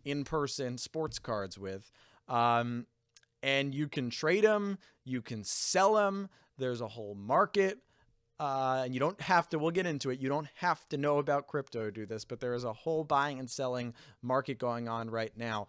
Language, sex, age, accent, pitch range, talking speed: English, male, 30-49, American, 115-150 Hz, 195 wpm